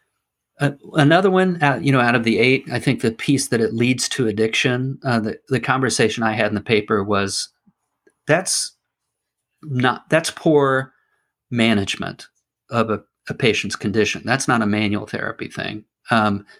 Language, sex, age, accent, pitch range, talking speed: English, male, 40-59, American, 110-130 Hz, 165 wpm